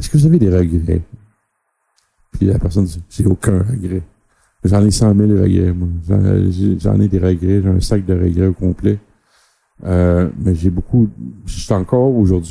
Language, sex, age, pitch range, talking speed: French, male, 50-69, 95-110 Hz, 195 wpm